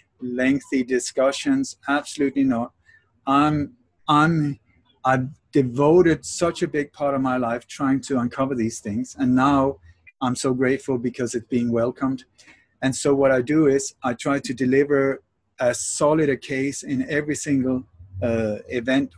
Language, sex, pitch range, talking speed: English, male, 125-155 Hz, 150 wpm